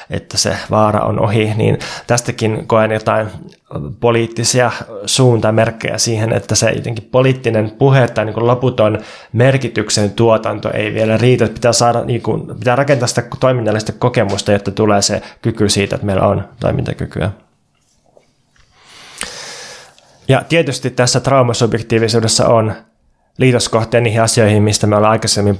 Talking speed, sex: 130 wpm, male